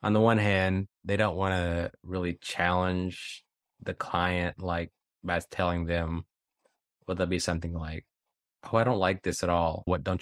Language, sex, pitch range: English, male, 85-95 Hz